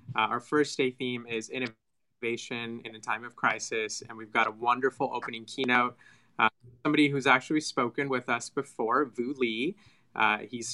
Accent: American